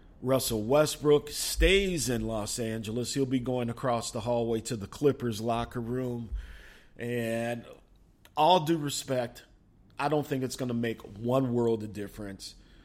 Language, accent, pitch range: English, American, 115-135 Hz